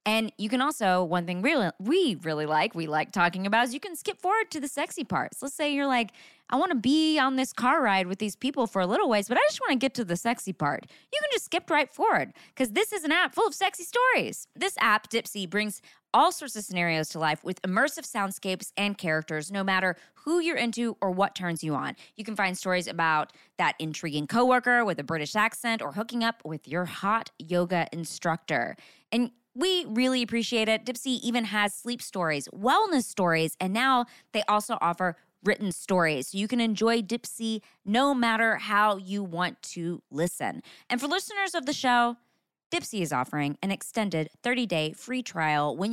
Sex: female